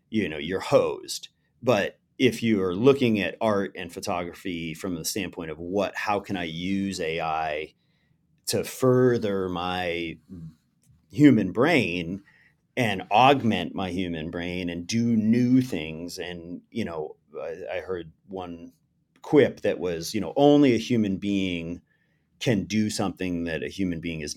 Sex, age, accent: male, 30-49, American